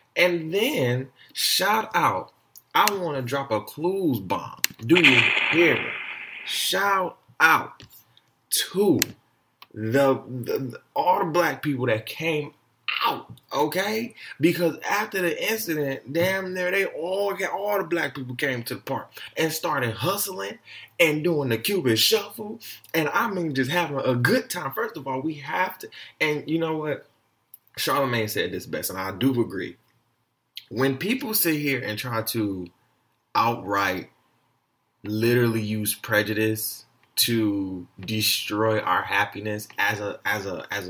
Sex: male